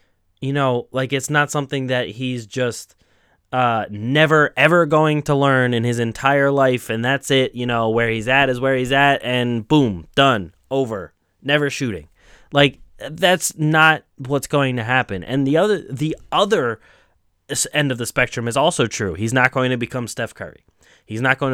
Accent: American